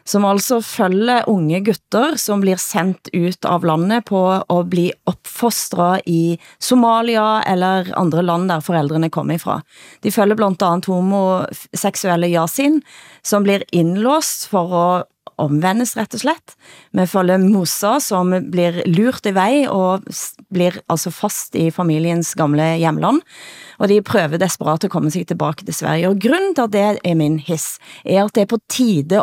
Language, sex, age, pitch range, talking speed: Danish, female, 30-49, 165-205 Hz, 160 wpm